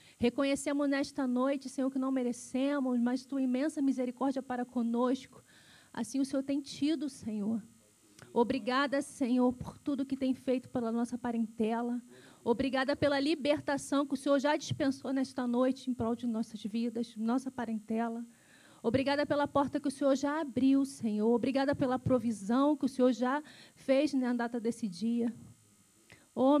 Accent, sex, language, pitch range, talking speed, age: Brazilian, female, Portuguese, 245-290 Hz, 155 wpm, 30-49